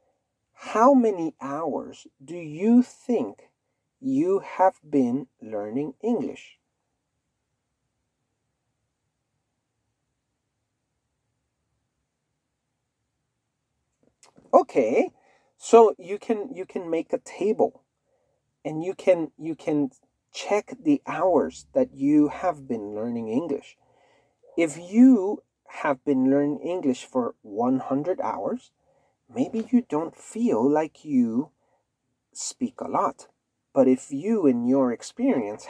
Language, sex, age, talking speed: English, male, 40-59, 100 wpm